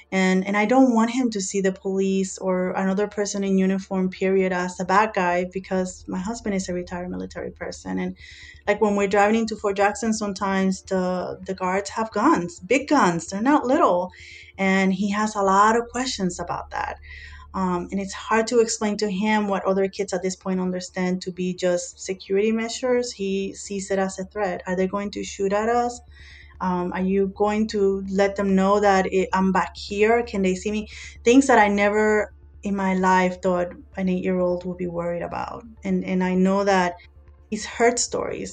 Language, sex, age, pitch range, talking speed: English, female, 20-39, 180-205 Hz, 200 wpm